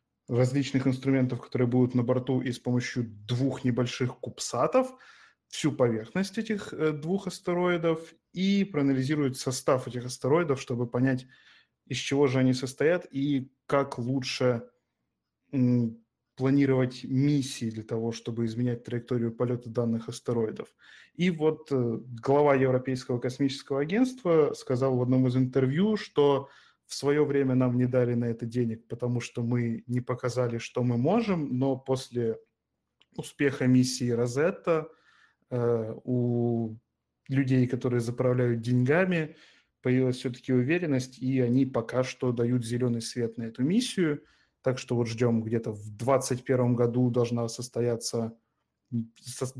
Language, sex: Russian, male